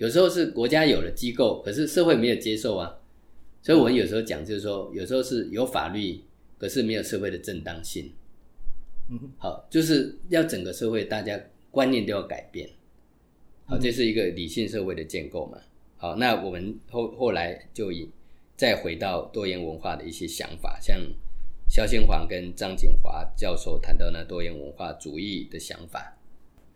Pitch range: 85-120 Hz